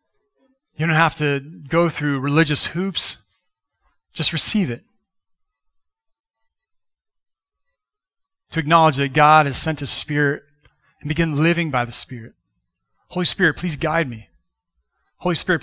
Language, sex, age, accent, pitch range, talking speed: English, male, 30-49, American, 125-170 Hz, 125 wpm